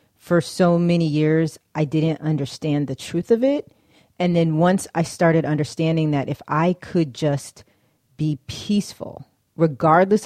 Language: English